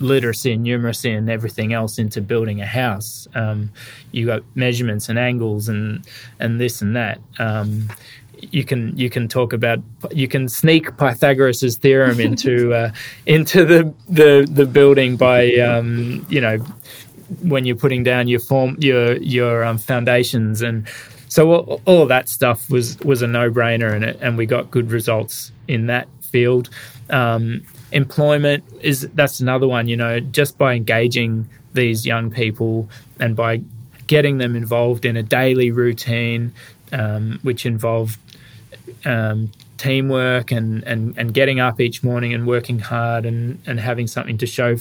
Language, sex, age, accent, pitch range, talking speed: English, male, 20-39, Australian, 115-130 Hz, 160 wpm